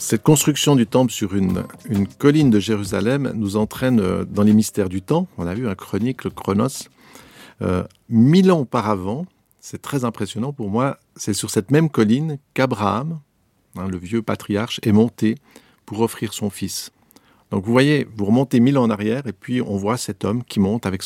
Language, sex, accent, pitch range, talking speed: French, male, French, 100-125 Hz, 190 wpm